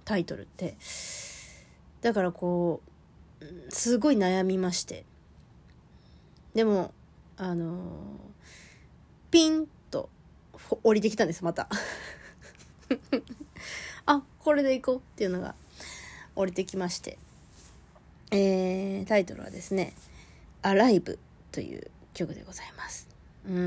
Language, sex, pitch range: Japanese, female, 180-255 Hz